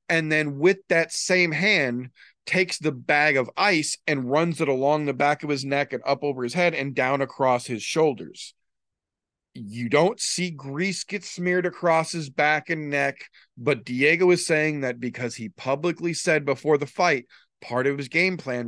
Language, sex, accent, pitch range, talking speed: English, male, American, 120-150 Hz, 185 wpm